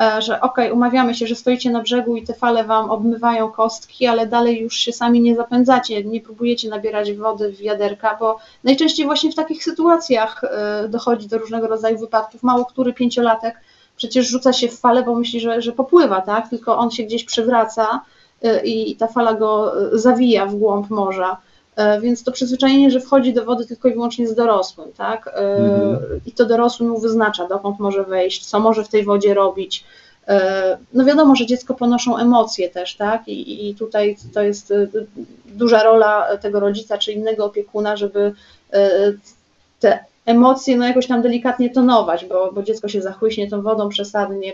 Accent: native